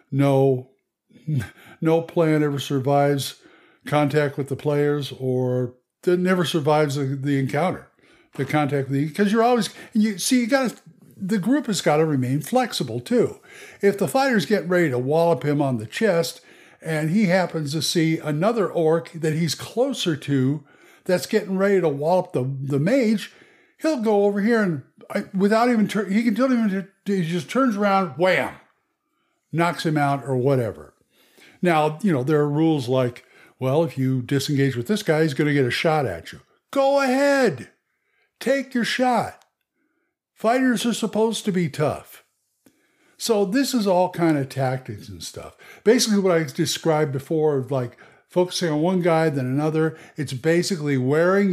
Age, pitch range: 60-79, 145-215 Hz